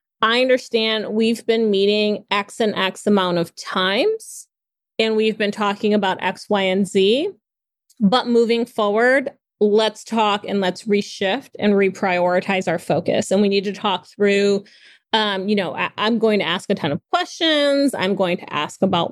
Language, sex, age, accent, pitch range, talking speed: English, female, 30-49, American, 195-225 Hz, 170 wpm